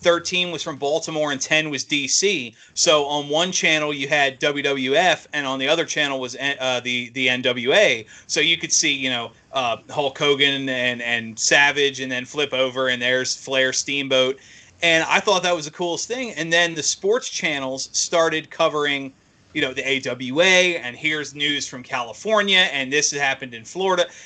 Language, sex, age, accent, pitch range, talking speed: English, male, 30-49, American, 130-155 Hz, 185 wpm